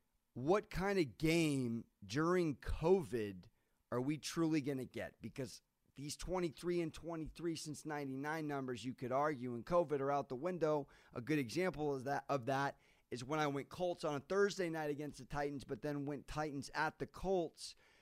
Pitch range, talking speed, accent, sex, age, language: 140-180 Hz, 185 wpm, American, male, 30-49, English